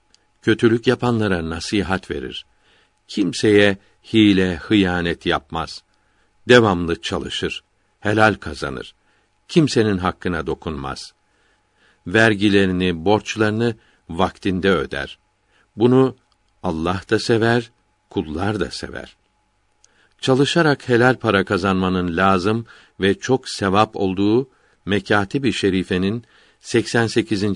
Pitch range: 95-110 Hz